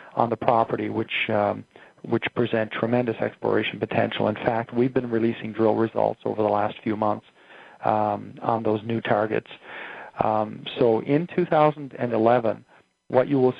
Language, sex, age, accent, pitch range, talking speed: English, male, 40-59, American, 110-120 Hz, 150 wpm